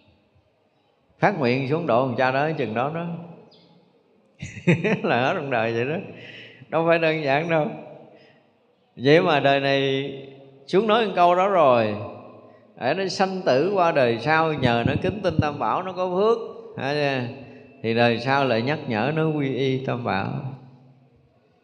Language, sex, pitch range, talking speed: Vietnamese, male, 120-165 Hz, 155 wpm